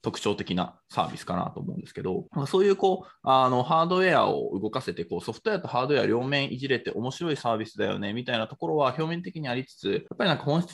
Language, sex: Japanese, male